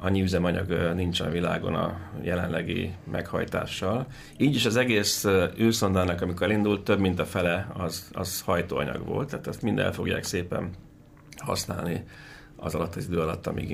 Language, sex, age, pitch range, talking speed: Hungarian, male, 30-49, 90-105 Hz, 155 wpm